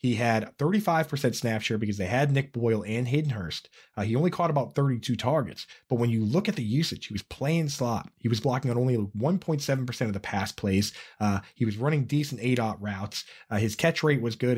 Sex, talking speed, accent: male, 220 wpm, American